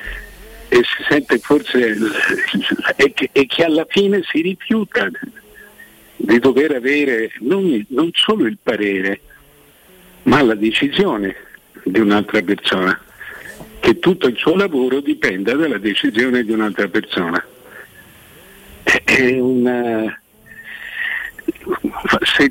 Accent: native